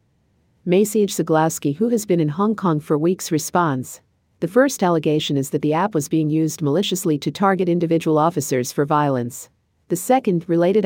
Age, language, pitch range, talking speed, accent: 50-69, English, 140-175 Hz, 170 wpm, American